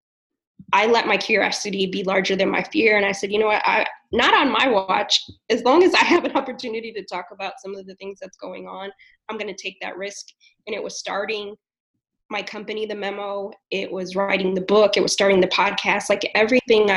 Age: 20-39